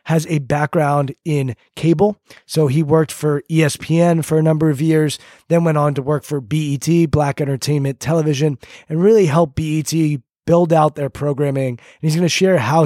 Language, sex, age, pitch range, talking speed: English, male, 20-39, 145-165 Hz, 180 wpm